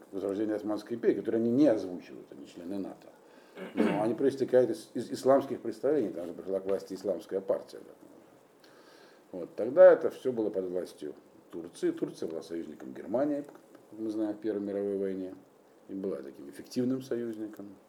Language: Russian